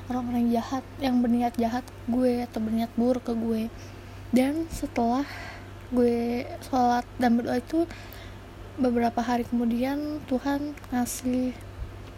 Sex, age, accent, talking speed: female, 20-39, native, 120 wpm